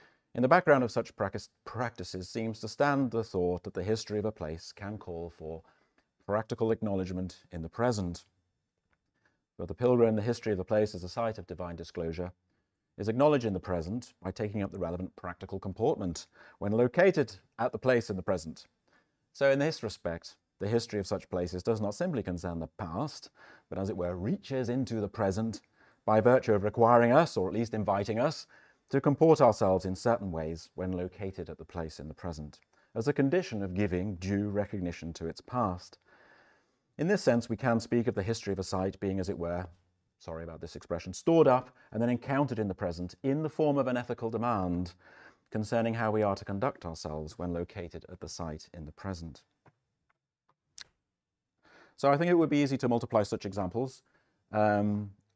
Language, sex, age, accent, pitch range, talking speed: English, male, 40-59, British, 90-115 Hz, 190 wpm